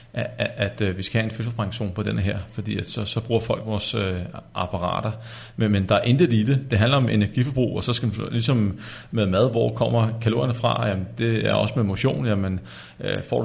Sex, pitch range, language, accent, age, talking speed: male, 105-120 Hz, Danish, native, 40-59, 230 wpm